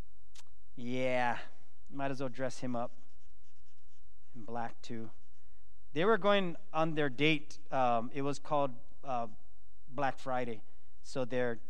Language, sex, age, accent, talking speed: English, male, 40-59, American, 130 wpm